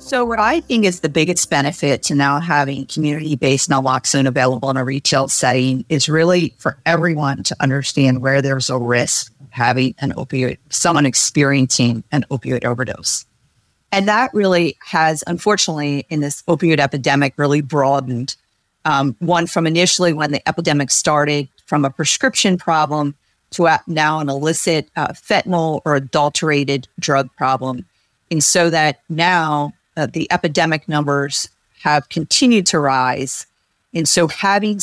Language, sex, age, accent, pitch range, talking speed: English, female, 40-59, American, 135-170 Hz, 145 wpm